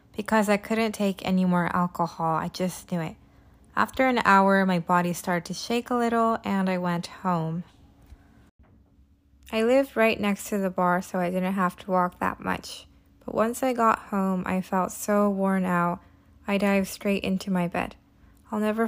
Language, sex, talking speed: English, female, 185 wpm